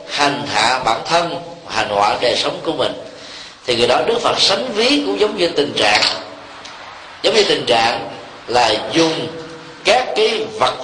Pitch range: 140-210 Hz